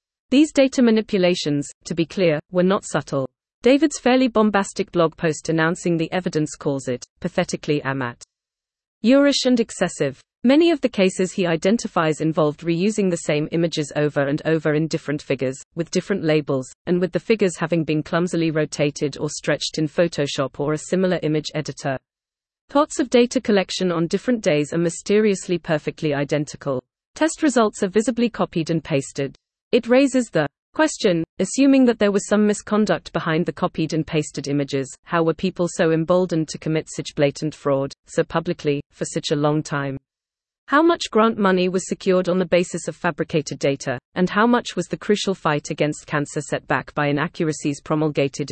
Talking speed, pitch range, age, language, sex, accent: 170 wpm, 150-205 Hz, 30-49, English, female, British